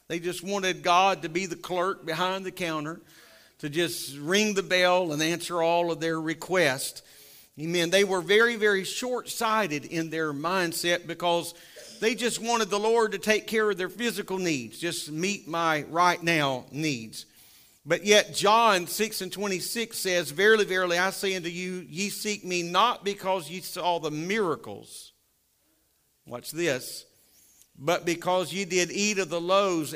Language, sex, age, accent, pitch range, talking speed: English, male, 50-69, American, 170-200 Hz, 165 wpm